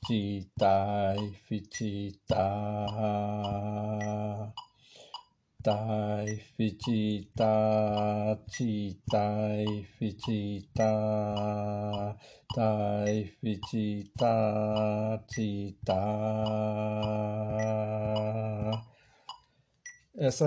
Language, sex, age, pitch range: Portuguese, male, 60-79, 105-110 Hz